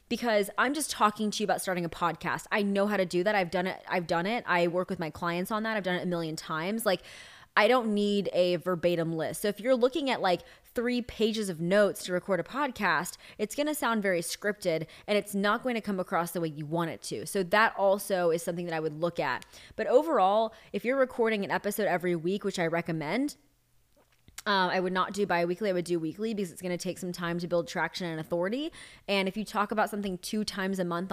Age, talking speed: 20-39, 245 wpm